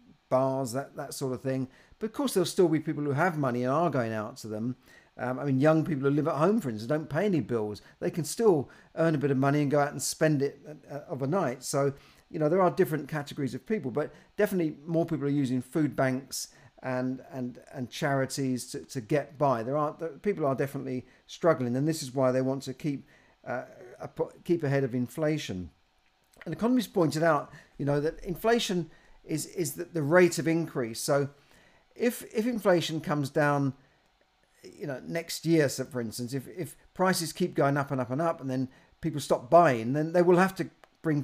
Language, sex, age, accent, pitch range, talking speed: English, male, 50-69, British, 130-165 Hz, 210 wpm